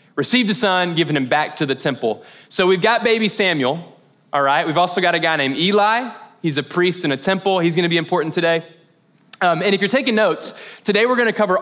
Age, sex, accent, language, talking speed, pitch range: 20-39, male, American, English, 230 wpm, 145-185 Hz